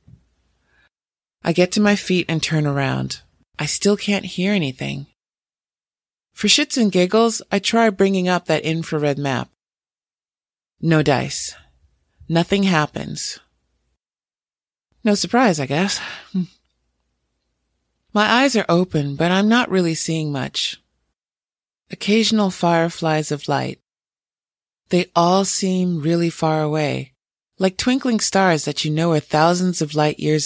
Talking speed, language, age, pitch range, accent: 125 wpm, English, 30-49, 145-185 Hz, American